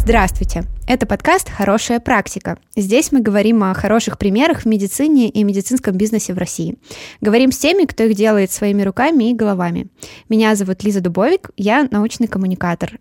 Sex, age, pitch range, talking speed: female, 20-39, 190-225 Hz, 160 wpm